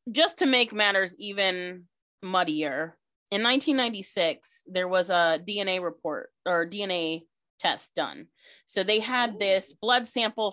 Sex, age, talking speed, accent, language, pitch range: female, 30-49, 130 wpm, American, English, 175-230 Hz